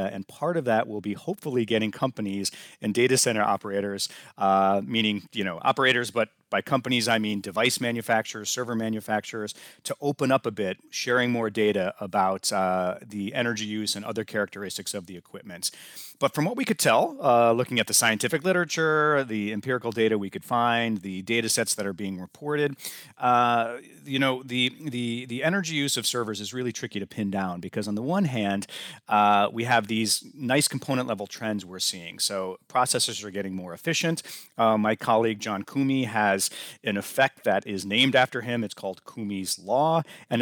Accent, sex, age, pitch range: American, male, 40-59, 105-125 Hz